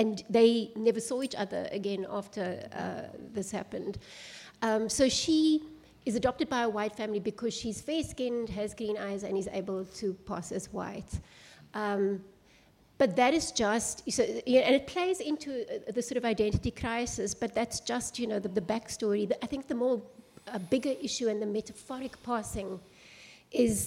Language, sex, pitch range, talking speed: English, female, 205-250 Hz, 175 wpm